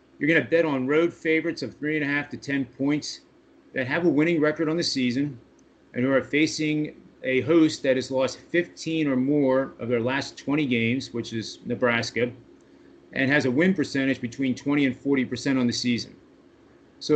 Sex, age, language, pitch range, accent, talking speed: male, 30-49, English, 120-140 Hz, American, 200 wpm